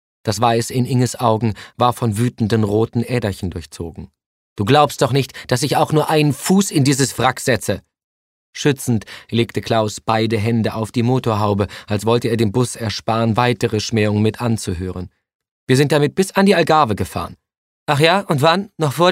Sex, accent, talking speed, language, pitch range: male, German, 180 wpm, German, 105-125 Hz